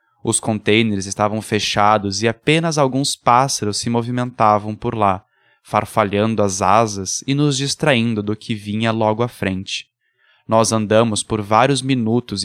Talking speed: 140 wpm